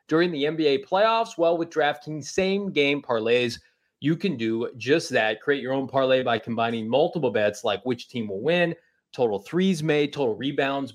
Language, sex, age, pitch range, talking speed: English, male, 30-49, 120-150 Hz, 175 wpm